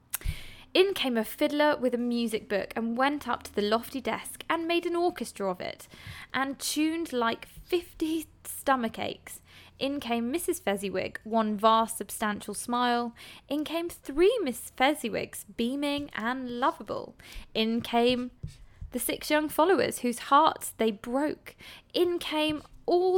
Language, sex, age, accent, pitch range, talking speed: English, female, 20-39, British, 225-295 Hz, 145 wpm